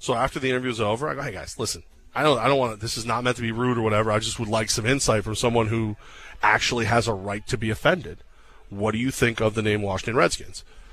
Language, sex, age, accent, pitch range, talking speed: English, male, 30-49, American, 110-135 Hz, 280 wpm